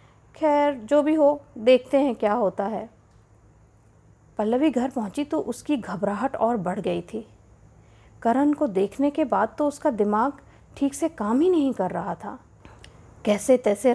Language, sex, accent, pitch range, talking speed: Hindi, female, native, 190-290 Hz, 160 wpm